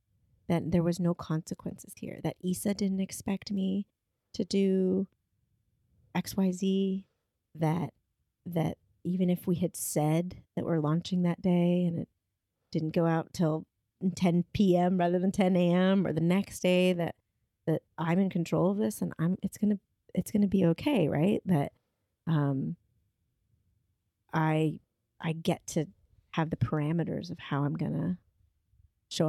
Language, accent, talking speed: English, American, 150 wpm